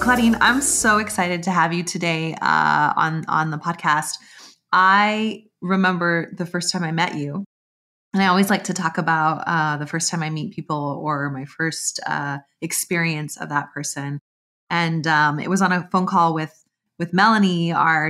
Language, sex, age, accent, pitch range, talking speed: English, female, 30-49, American, 155-190 Hz, 180 wpm